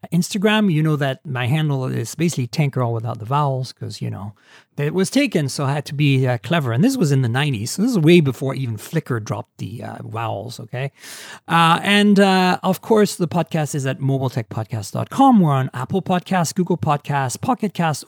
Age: 40-59